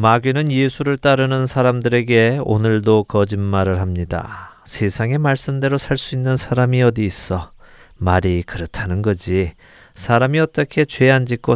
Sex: male